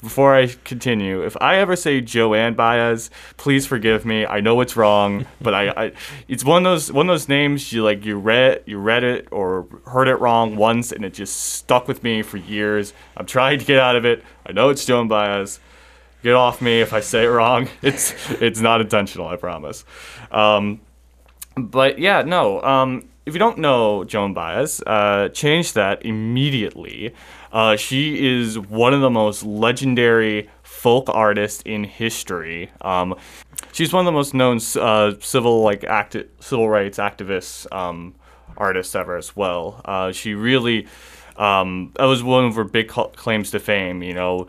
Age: 20-39